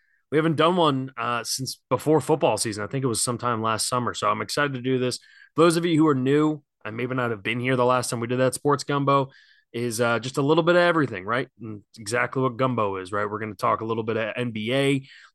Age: 20-39